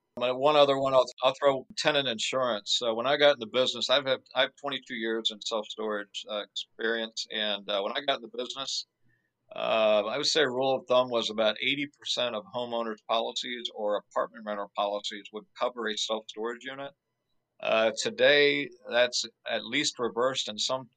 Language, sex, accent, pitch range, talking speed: English, male, American, 105-125 Hz, 185 wpm